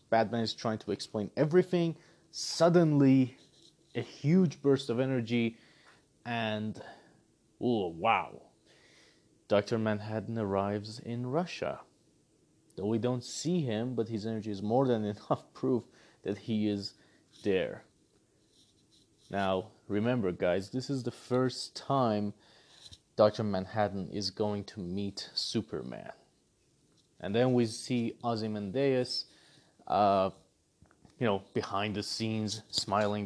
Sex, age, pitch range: male, 30-49, 105-130 Hz